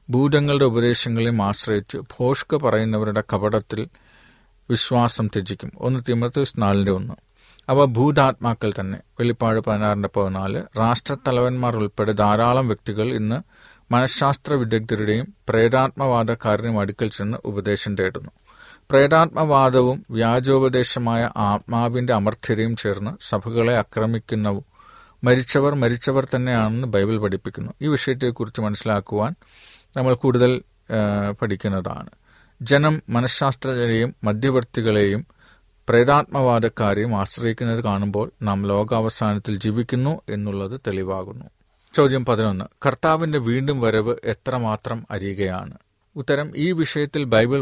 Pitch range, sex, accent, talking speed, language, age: 105-130 Hz, male, native, 85 wpm, Malayalam, 40-59